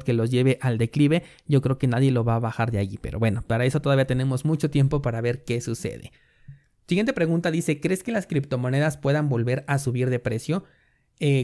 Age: 30-49